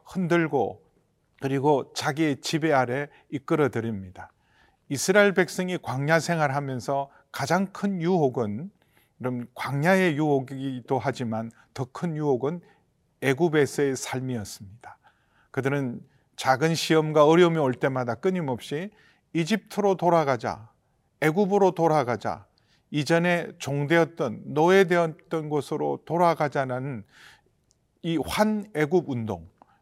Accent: native